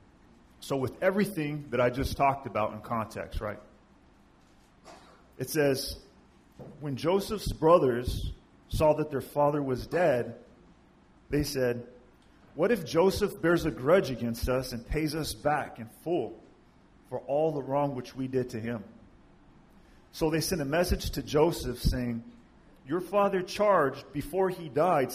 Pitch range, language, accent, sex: 115-145 Hz, English, American, male